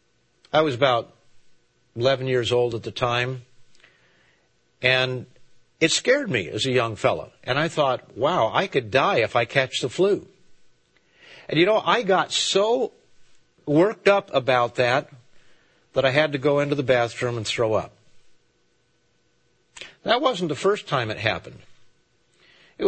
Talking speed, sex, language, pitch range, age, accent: 150 wpm, male, English, 115-145 Hz, 50-69, American